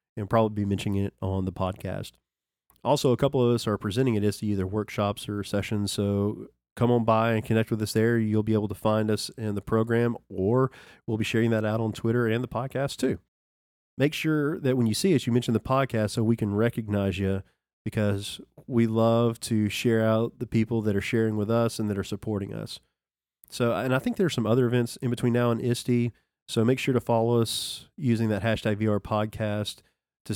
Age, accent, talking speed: 40-59, American, 215 wpm